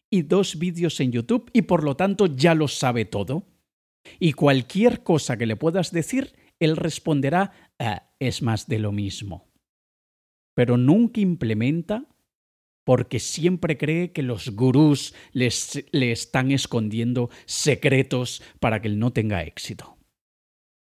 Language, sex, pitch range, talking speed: Spanish, male, 110-165 Hz, 135 wpm